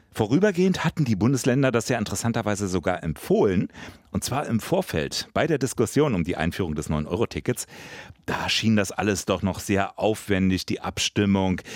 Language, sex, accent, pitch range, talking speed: German, male, German, 90-120 Hz, 170 wpm